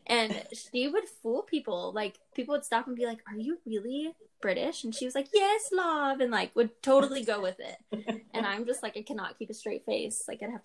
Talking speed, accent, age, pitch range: 235 wpm, American, 10-29, 195-245 Hz